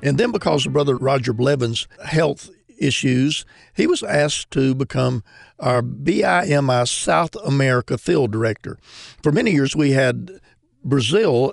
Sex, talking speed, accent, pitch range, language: male, 135 wpm, American, 125-150 Hz, English